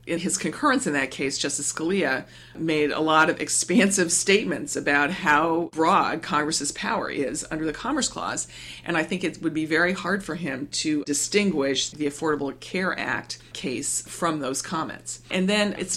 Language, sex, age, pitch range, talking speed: English, female, 40-59, 140-170 Hz, 175 wpm